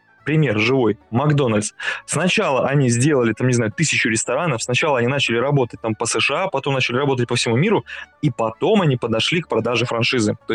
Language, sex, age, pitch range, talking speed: Russian, male, 20-39, 120-155 Hz, 180 wpm